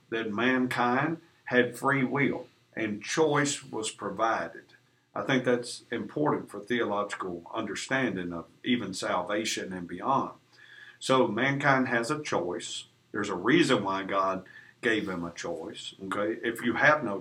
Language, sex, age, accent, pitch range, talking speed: English, male, 50-69, American, 105-140 Hz, 140 wpm